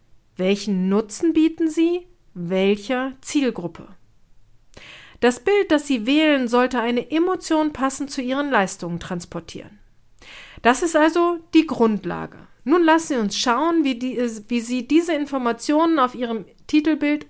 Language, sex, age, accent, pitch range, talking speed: German, female, 40-59, German, 215-300 Hz, 130 wpm